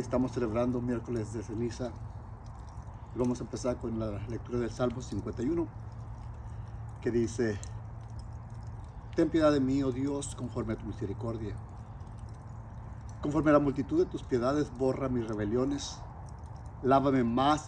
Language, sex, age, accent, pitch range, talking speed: English, male, 50-69, Mexican, 110-130 Hz, 130 wpm